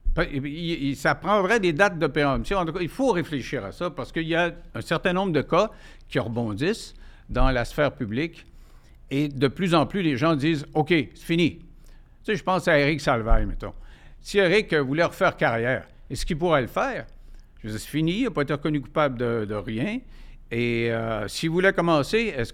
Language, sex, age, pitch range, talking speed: French, male, 60-79, 130-195 Hz, 210 wpm